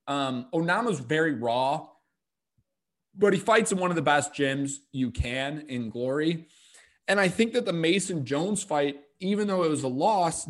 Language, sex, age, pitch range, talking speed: English, male, 20-39, 135-180 Hz, 175 wpm